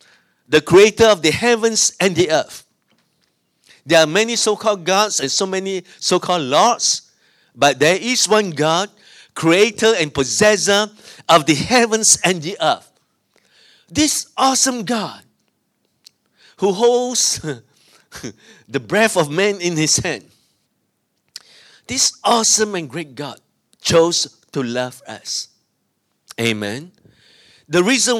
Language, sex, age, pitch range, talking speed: English, male, 50-69, 165-220 Hz, 120 wpm